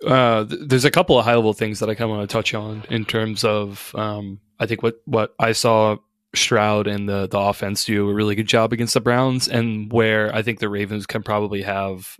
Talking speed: 240 wpm